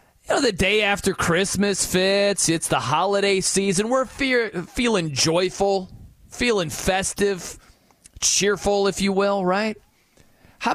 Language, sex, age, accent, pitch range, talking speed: English, male, 30-49, American, 150-200 Hz, 130 wpm